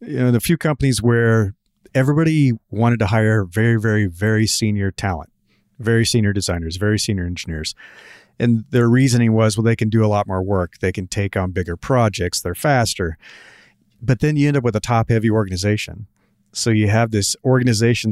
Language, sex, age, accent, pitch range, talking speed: English, male, 40-59, American, 100-120 Hz, 180 wpm